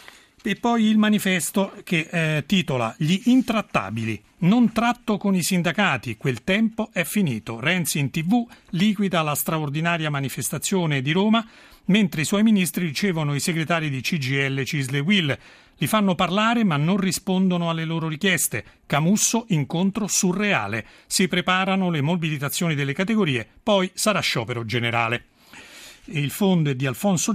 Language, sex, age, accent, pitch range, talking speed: Italian, male, 40-59, native, 140-195 Hz, 145 wpm